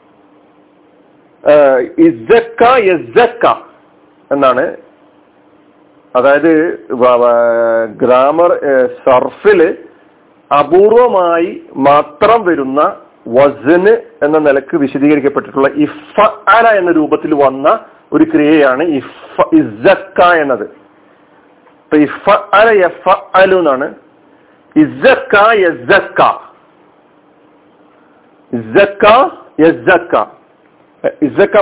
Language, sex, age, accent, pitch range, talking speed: Malayalam, male, 50-69, native, 150-240 Hz, 40 wpm